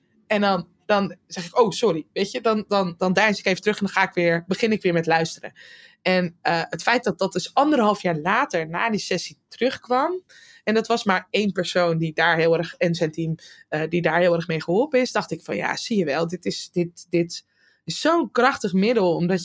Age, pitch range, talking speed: 20-39, 160-200 Hz, 240 wpm